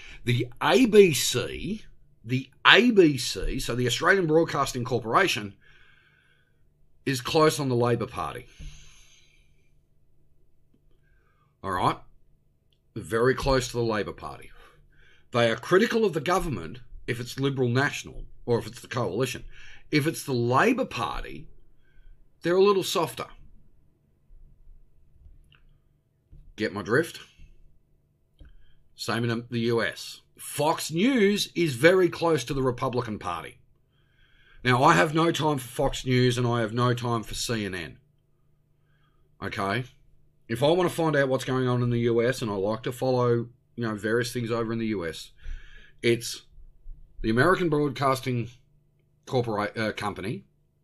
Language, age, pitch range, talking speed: English, 50-69, 110-140 Hz, 125 wpm